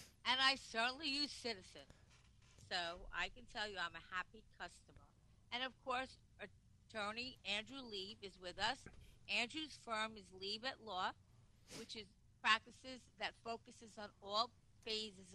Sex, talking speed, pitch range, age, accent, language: female, 145 wpm, 195-240 Hz, 50-69, American, English